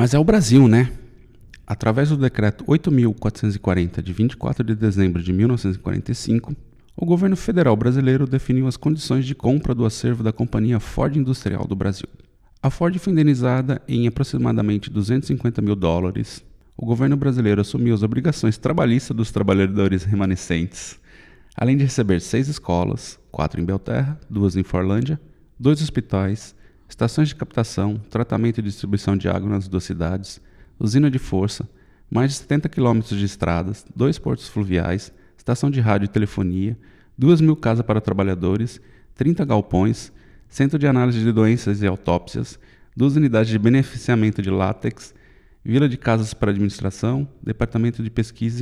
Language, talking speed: Portuguese, 150 wpm